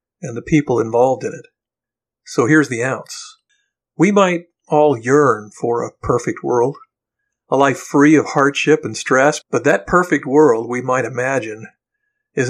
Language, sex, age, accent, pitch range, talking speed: English, male, 50-69, American, 130-165 Hz, 160 wpm